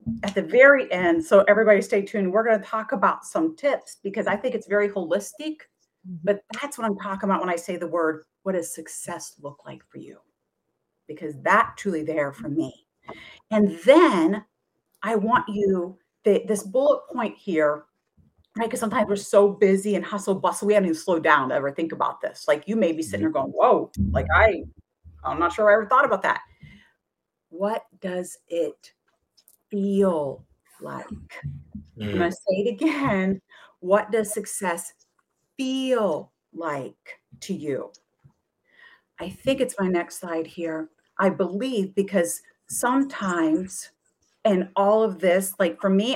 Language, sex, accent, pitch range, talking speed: English, female, American, 175-225 Hz, 165 wpm